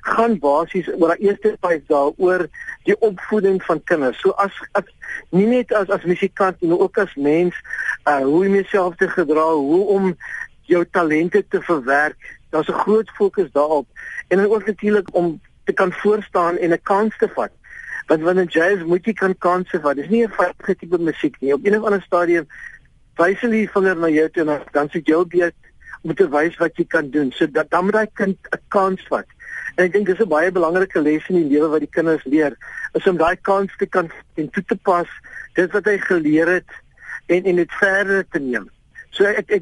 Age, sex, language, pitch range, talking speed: 60-79, male, Dutch, 165-200 Hz, 215 wpm